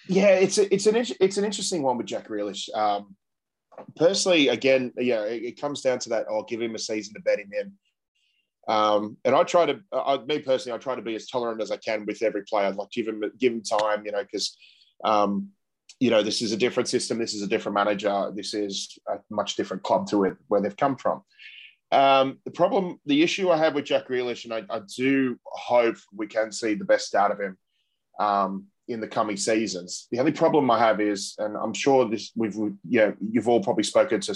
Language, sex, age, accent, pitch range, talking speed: English, male, 20-39, Australian, 105-135 Hz, 225 wpm